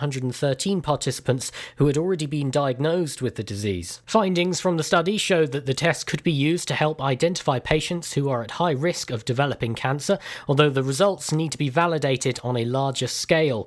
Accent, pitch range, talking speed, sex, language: British, 135-180 Hz, 195 wpm, male, English